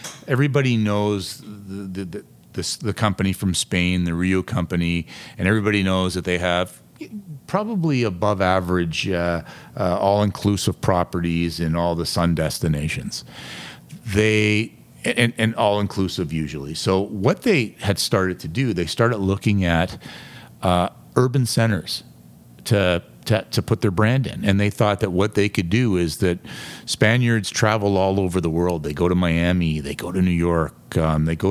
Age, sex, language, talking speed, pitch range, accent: 40-59, male, English, 160 wpm, 85-110 Hz, American